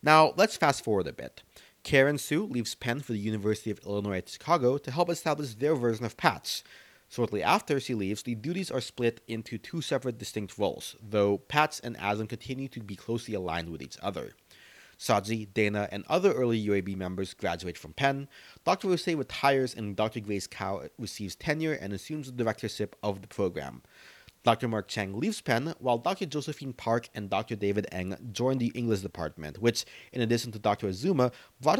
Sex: male